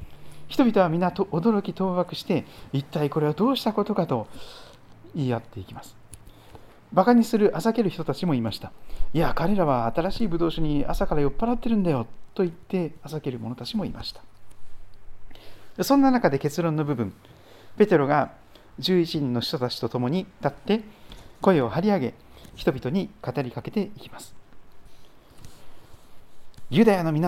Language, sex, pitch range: Japanese, male, 115-190 Hz